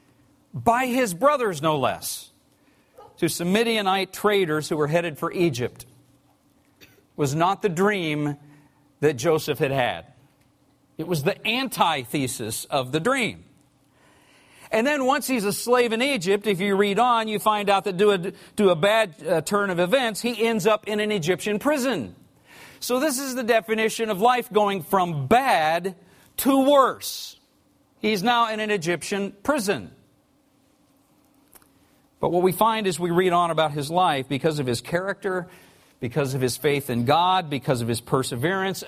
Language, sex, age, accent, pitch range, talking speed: English, male, 50-69, American, 140-205 Hz, 160 wpm